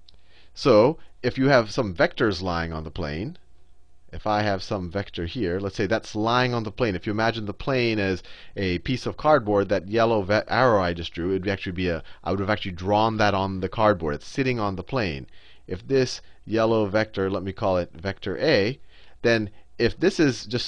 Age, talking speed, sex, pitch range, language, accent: 30-49, 210 wpm, male, 85-120 Hz, English, American